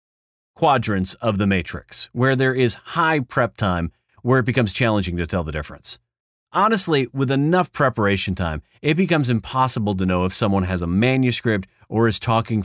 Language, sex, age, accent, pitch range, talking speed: English, male, 40-59, American, 95-135 Hz, 170 wpm